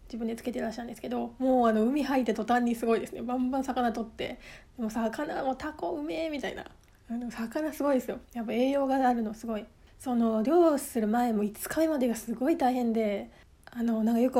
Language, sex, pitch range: Japanese, female, 230-280 Hz